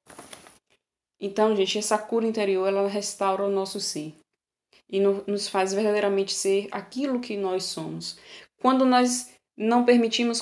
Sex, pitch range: female, 185-215 Hz